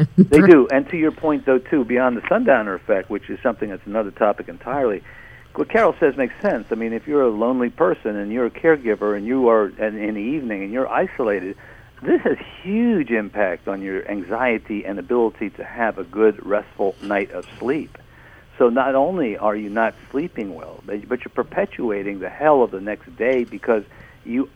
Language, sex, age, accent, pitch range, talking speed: English, male, 50-69, American, 105-130 Hz, 200 wpm